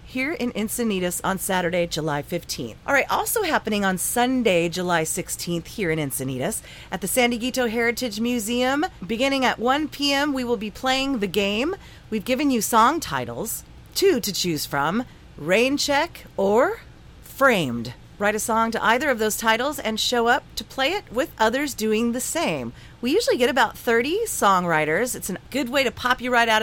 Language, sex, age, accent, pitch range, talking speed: English, female, 40-59, American, 195-260 Hz, 180 wpm